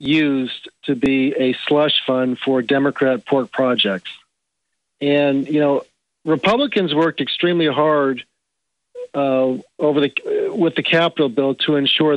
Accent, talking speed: American, 135 wpm